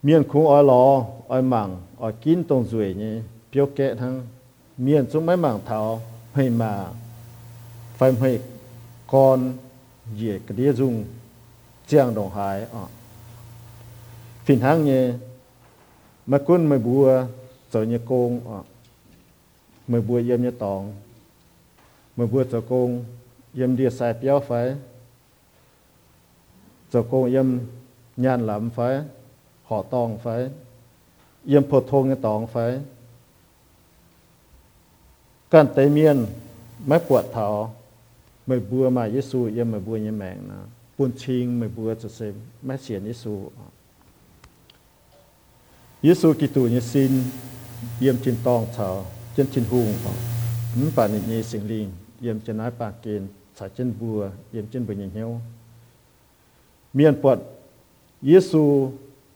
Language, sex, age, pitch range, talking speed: English, male, 50-69, 115-130 Hz, 65 wpm